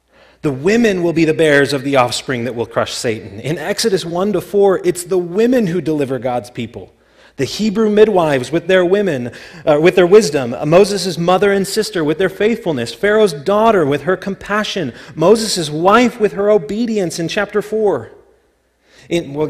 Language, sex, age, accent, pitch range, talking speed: English, male, 30-49, American, 150-205 Hz, 170 wpm